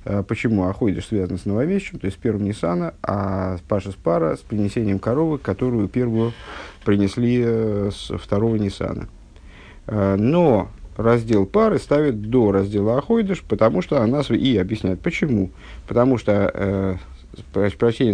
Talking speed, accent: 135 wpm, native